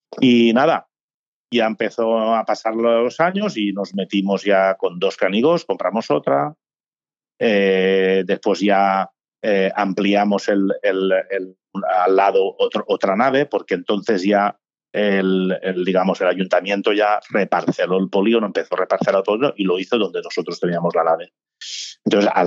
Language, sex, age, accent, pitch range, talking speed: Spanish, male, 40-59, Spanish, 95-120 Hz, 150 wpm